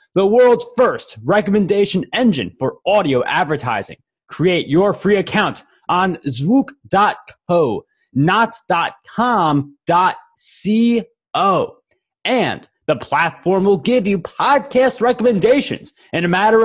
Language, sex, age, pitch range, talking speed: English, male, 20-39, 165-250 Hz, 95 wpm